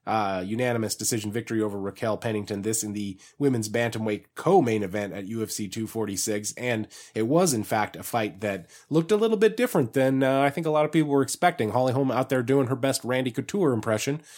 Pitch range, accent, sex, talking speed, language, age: 110-145 Hz, American, male, 210 wpm, English, 20-39